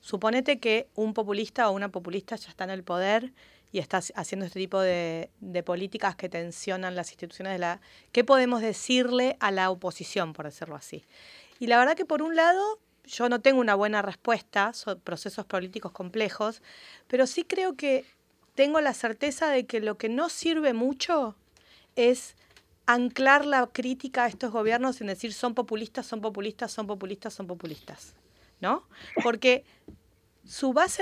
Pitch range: 200-275 Hz